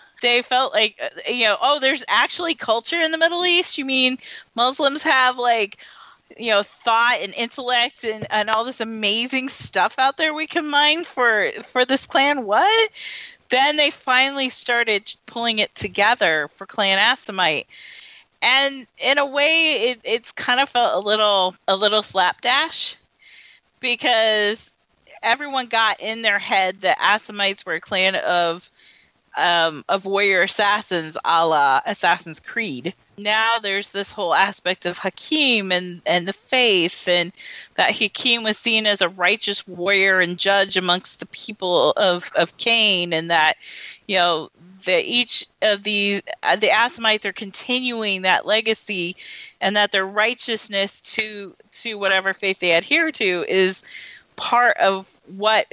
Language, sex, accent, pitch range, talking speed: English, female, American, 190-250 Hz, 150 wpm